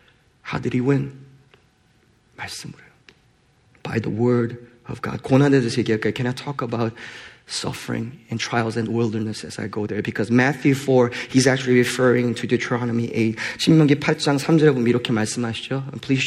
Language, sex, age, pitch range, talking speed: English, male, 30-49, 120-190 Hz, 120 wpm